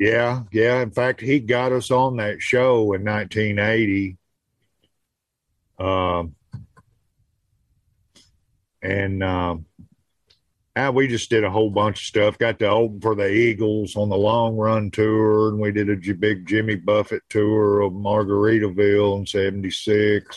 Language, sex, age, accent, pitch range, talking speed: English, male, 50-69, American, 95-110 Hz, 135 wpm